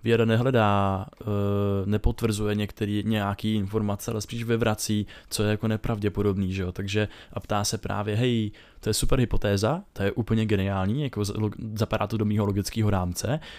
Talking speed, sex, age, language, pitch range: 165 wpm, male, 20-39, Czech, 105-120 Hz